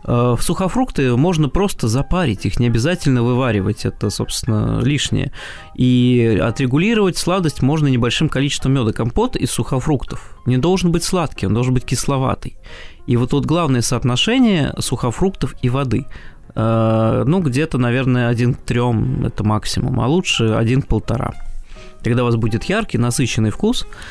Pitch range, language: 115-145 Hz, Russian